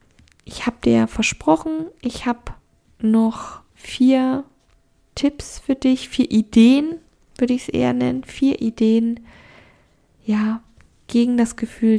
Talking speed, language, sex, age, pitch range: 125 wpm, German, female, 10-29, 195-245 Hz